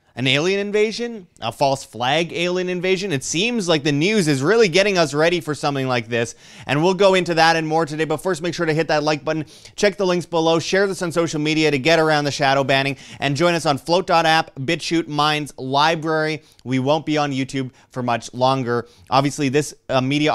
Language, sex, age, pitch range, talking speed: English, male, 30-49, 115-165 Hz, 210 wpm